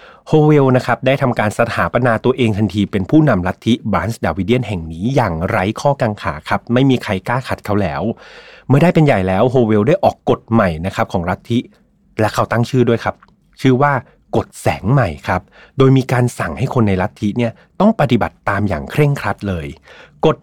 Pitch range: 105-140 Hz